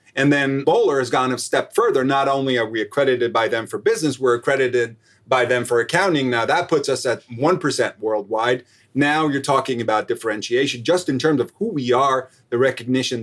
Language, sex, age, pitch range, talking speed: English, male, 30-49, 120-155 Hz, 200 wpm